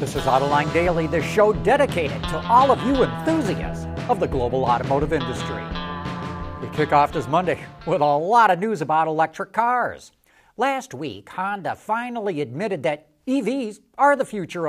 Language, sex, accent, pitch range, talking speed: English, male, American, 145-225 Hz, 165 wpm